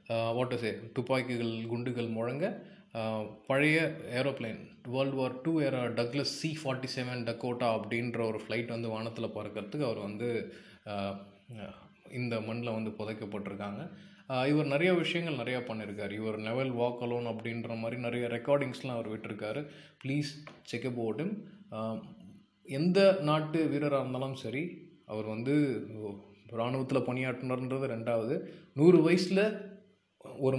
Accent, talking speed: native, 110 wpm